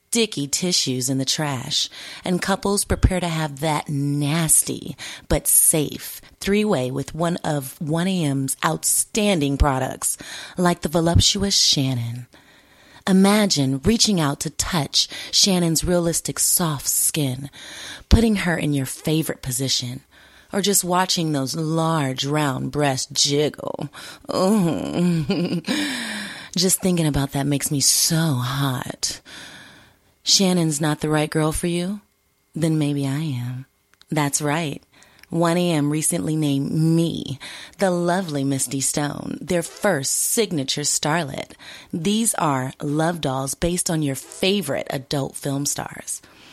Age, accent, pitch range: 30-49, American, 140-175 Hz